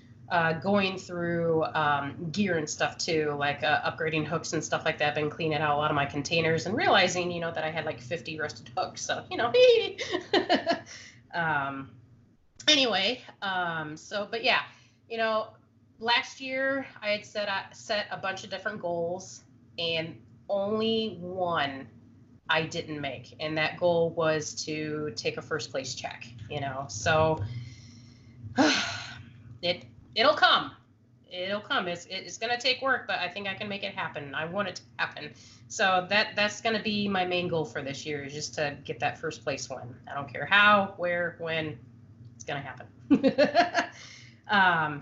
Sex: female